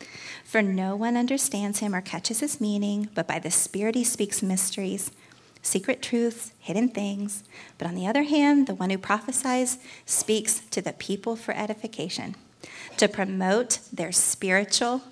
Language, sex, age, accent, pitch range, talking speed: English, female, 30-49, American, 190-235 Hz, 155 wpm